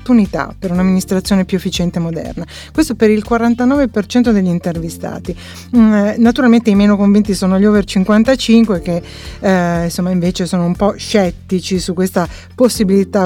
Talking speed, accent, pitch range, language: 135 wpm, native, 185-235 Hz, Italian